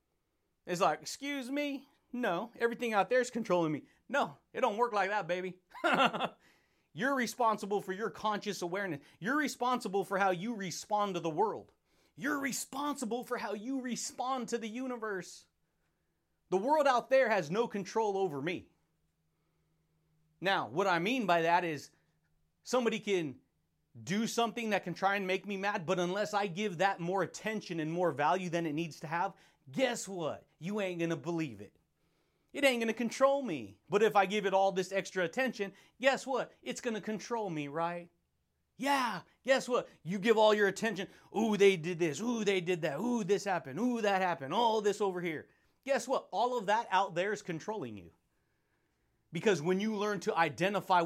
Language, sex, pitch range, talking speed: English, male, 170-230 Hz, 180 wpm